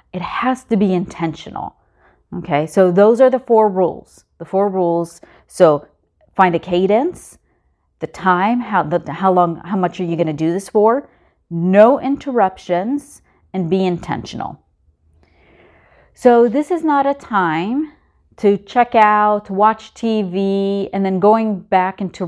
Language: English